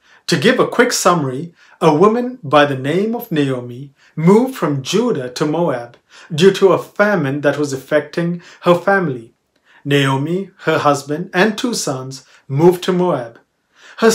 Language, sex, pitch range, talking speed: English, male, 140-195 Hz, 155 wpm